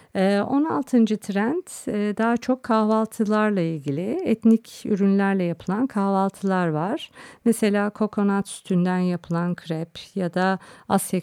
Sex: female